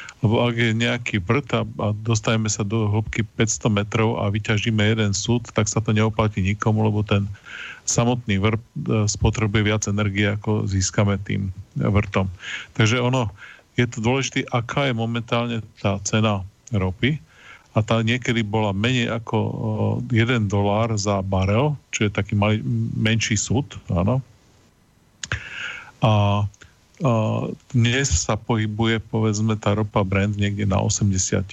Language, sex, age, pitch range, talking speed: Slovak, male, 40-59, 105-120 Hz, 130 wpm